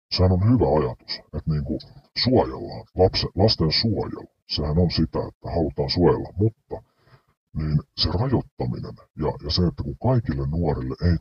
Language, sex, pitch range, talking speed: Finnish, female, 70-95 Hz, 155 wpm